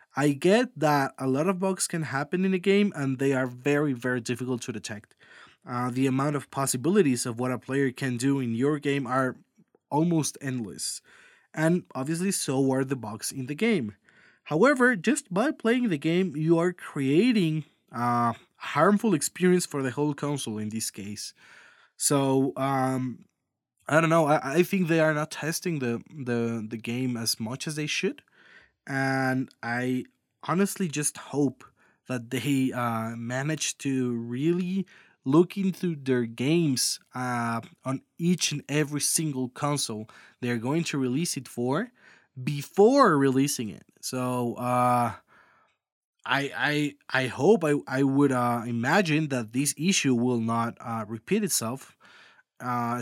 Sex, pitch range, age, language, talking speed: male, 125-160 Hz, 20-39, English, 155 wpm